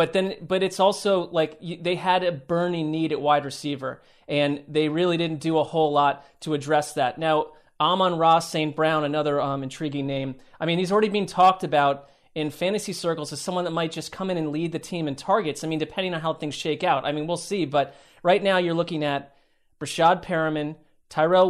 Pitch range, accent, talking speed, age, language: 150-180 Hz, American, 220 wpm, 30-49, English